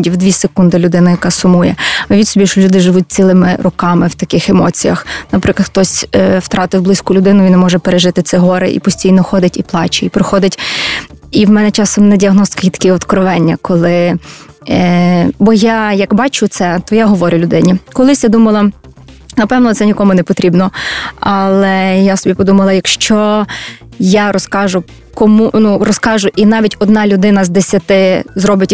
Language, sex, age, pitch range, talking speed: Ukrainian, female, 20-39, 185-205 Hz, 165 wpm